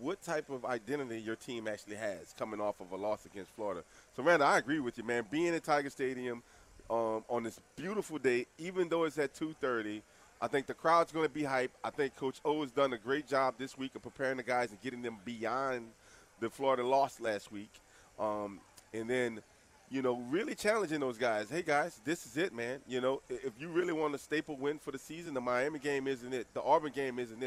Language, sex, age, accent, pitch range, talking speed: English, male, 30-49, American, 115-145 Hz, 225 wpm